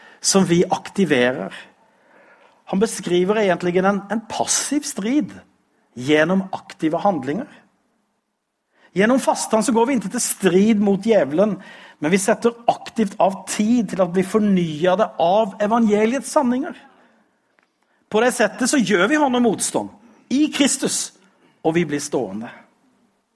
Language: Swedish